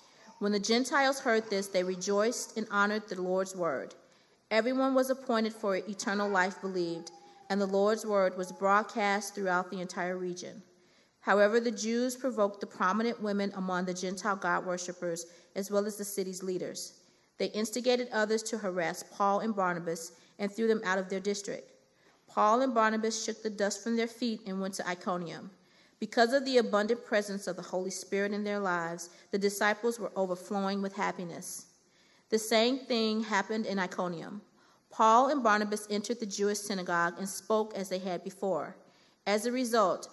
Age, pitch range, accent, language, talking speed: 40-59, 190-225 Hz, American, English, 170 wpm